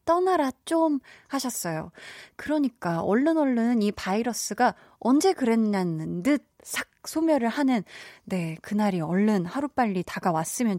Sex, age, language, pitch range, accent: female, 20-39, Korean, 185-270 Hz, native